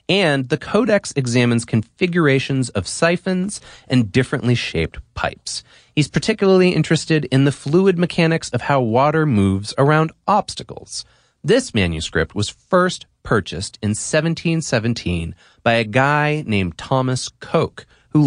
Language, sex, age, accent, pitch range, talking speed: English, male, 30-49, American, 105-155 Hz, 125 wpm